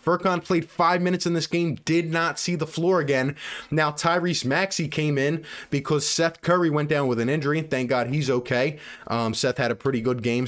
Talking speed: 220 wpm